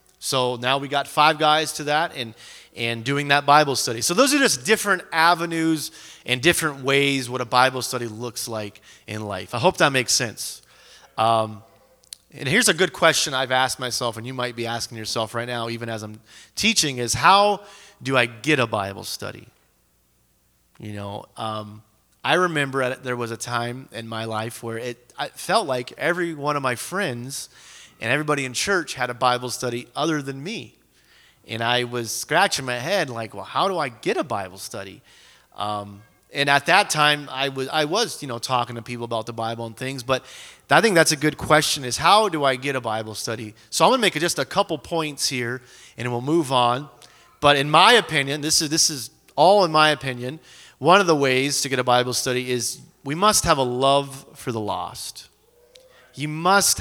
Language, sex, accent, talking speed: English, male, American, 205 wpm